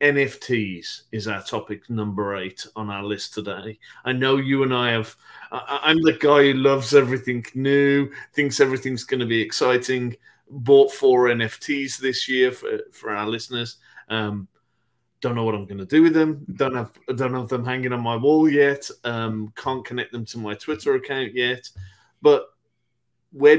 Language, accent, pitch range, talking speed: English, British, 105-125 Hz, 175 wpm